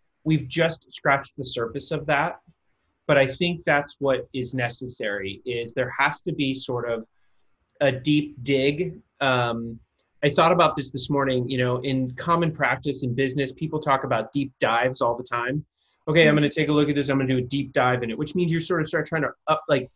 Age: 30-49